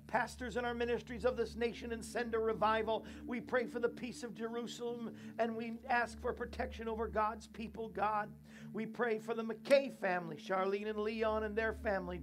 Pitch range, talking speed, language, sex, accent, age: 200-230 Hz, 190 wpm, English, male, American, 50-69